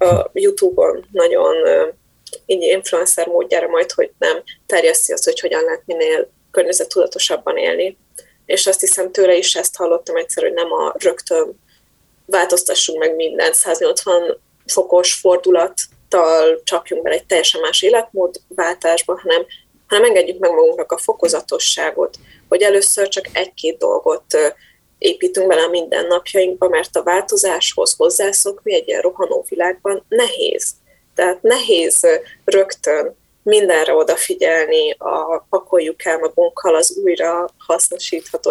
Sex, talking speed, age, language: female, 120 wpm, 20-39, Hungarian